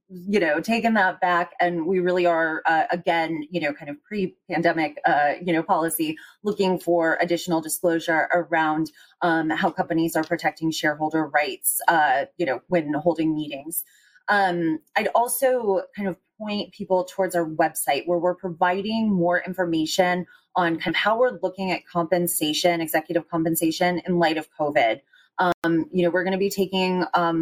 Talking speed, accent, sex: 165 wpm, American, female